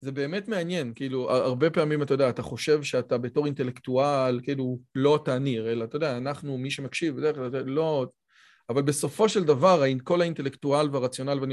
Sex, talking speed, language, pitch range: male, 160 wpm, Hebrew, 130-155 Hz